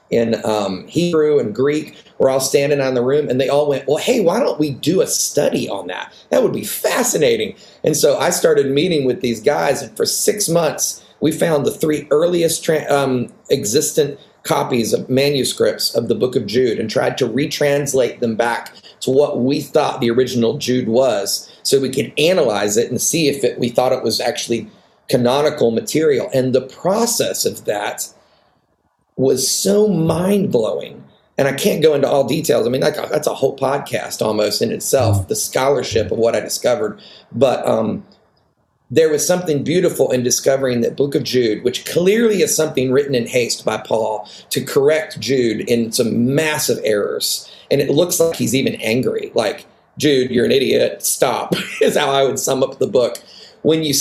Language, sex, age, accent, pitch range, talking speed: English, male, 30-49, American, 125-200 Hz, 185 wpm